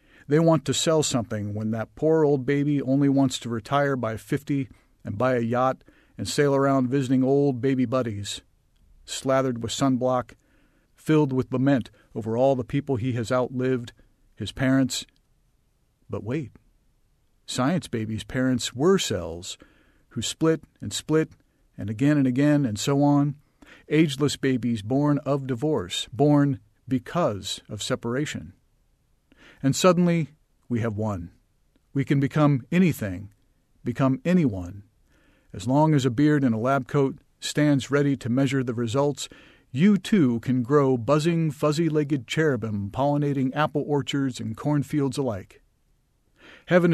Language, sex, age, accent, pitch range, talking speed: English, male, 50-69, American, 120-145 Hz, 140 wpm